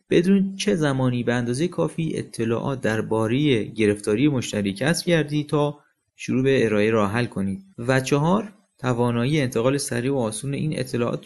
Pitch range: 110-150 Hz